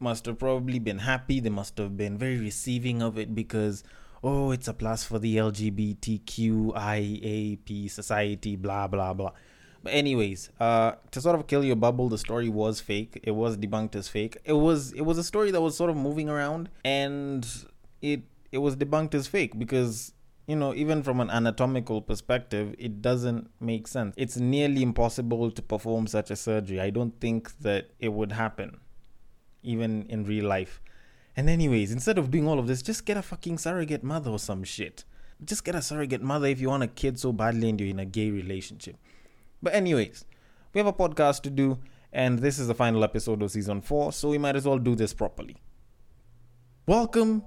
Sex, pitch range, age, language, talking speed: male, 110-150 Hz, 20-39, English, 195 wpm